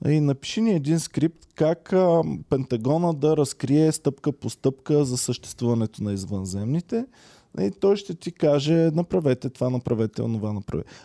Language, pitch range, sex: Bulgarian, 120-160 Hz, male